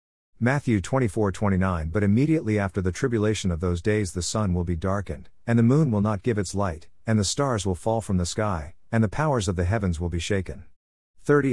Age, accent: 50-69, American